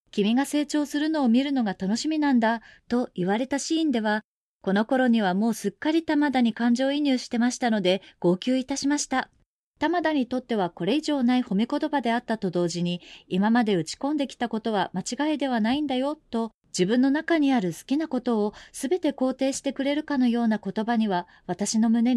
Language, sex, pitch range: Japanese, female, 215-280 Hz